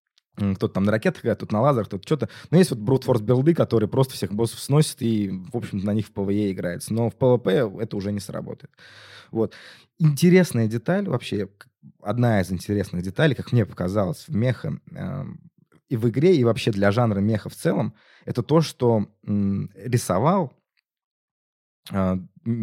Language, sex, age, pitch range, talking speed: Russian, male, 20-39, 105-135 Hz, 170 wpm